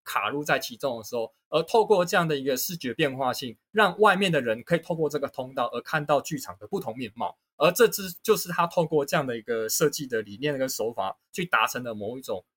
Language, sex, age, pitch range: Chinese, male, 20-39, 120-175 Hz